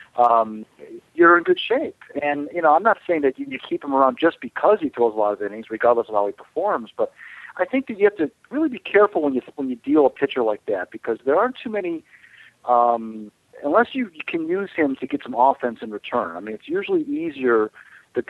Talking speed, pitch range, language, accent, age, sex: 235 wpm, 115-185 Hz, English, American, 50-69, male